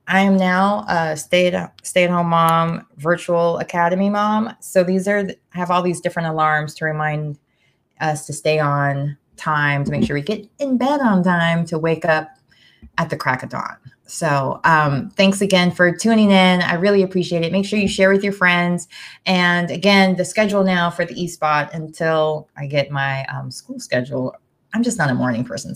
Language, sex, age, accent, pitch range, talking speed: English, female, 20-39, American, 165-195 Hz, 190 wpm